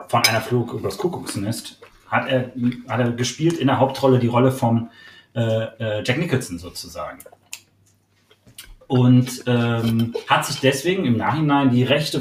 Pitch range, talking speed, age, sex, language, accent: 110-135 Hz, 145 wpm, 30-49, male, German, German